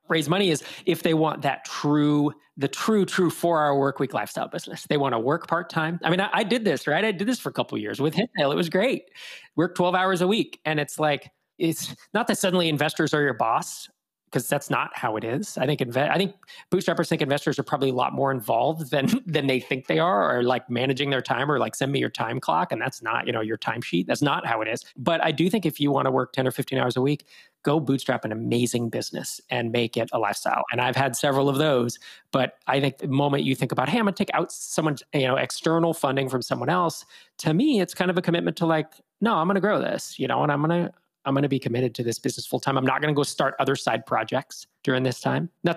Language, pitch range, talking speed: English, 135-185 Hz, 265 wpm